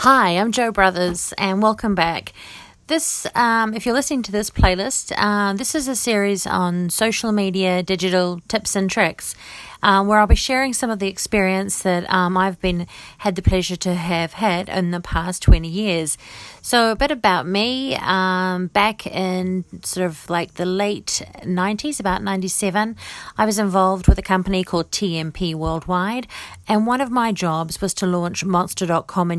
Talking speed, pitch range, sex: 180 wpm, 170-205 Hz, female